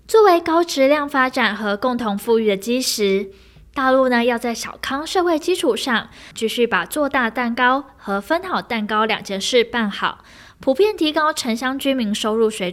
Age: 10-29